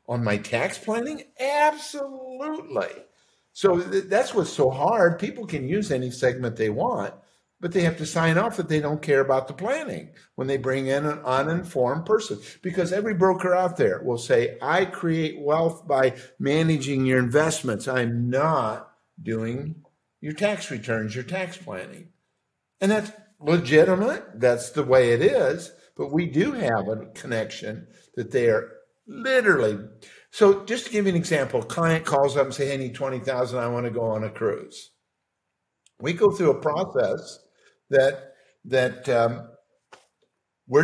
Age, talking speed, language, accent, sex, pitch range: 50-69, 160 wpm, English, American, male, 130-190 Hz